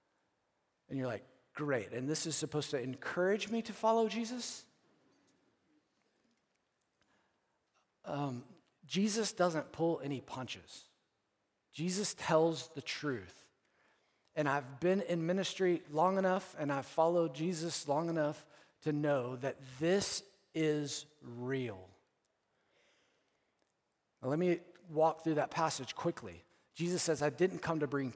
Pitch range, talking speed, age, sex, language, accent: 150-200 Hz, 120 wpm, 40-59, male, English, American